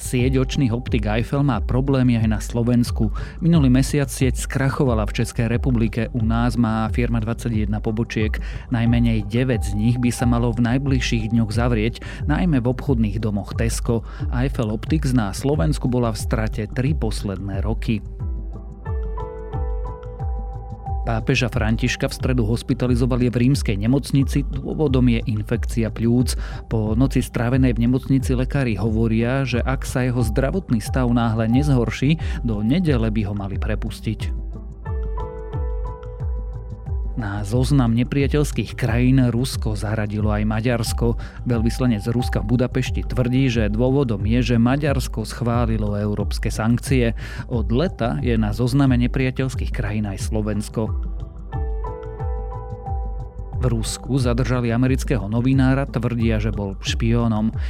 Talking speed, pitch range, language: 125 wpm, 110-125 Hz, Slovak